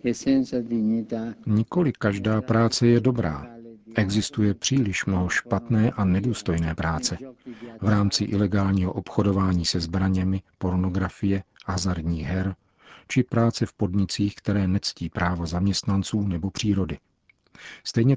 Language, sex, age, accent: Czech, male, 40-59, native